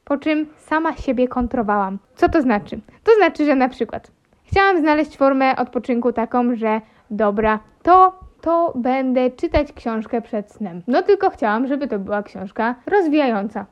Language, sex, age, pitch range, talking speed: Polish, female, 20-39, 235-315 Hz, 155 wpm